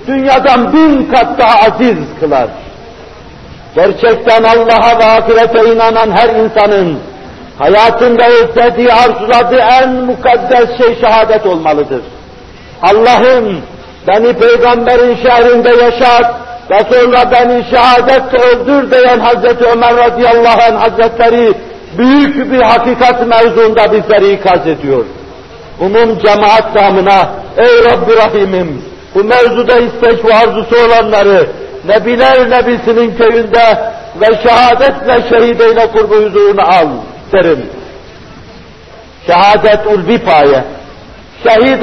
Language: Turkish